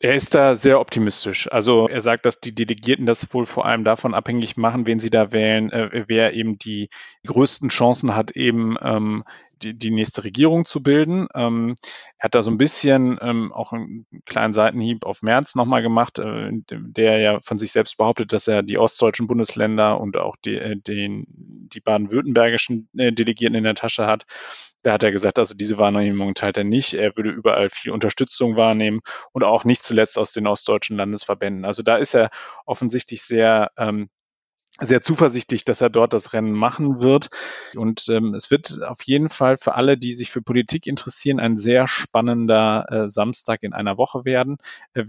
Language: German